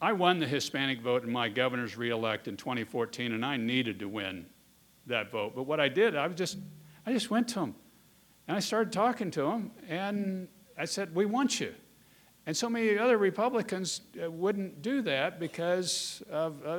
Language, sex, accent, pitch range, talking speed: English, male, American, 155-220 Hz, 185 wpm